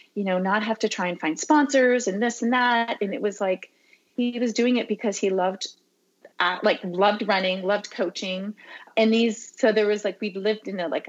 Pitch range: 185-230 Hz